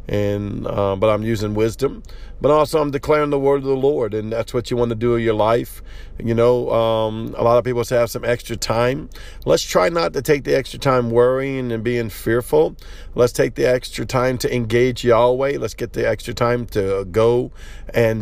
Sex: male